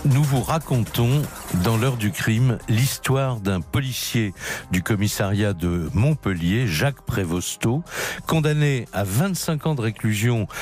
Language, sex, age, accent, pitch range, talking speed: French, male, 60-79, French, 105-140 Hz, 125 wpm